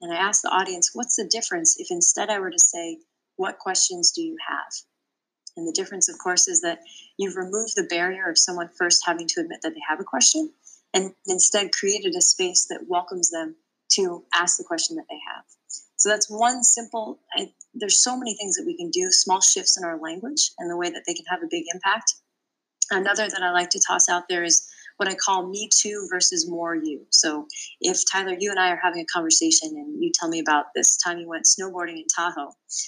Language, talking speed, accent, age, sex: English, 225 wpm, American, 30-49, female